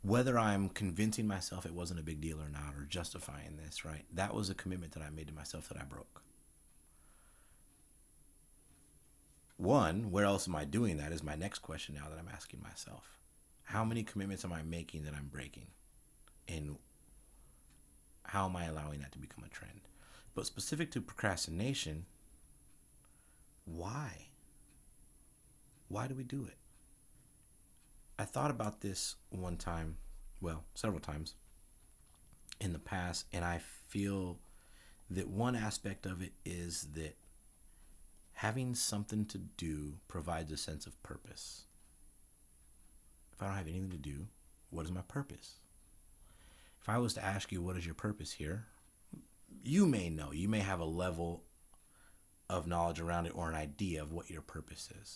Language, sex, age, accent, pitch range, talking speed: English, male, 30-49, American, 75-100 Hz, 160 wpm